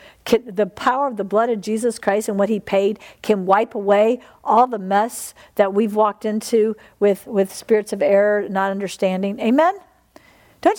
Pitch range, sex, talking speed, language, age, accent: 215-335 Hz, female, 170 wpm, English, 50-69, American